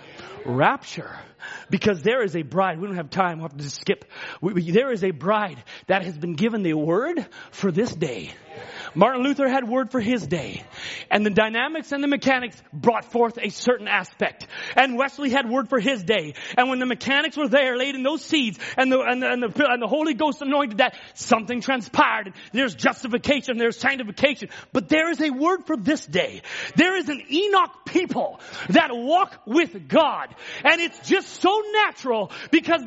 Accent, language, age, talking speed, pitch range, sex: American, English, 30-49, 190 wpm, 225-320 Hz, male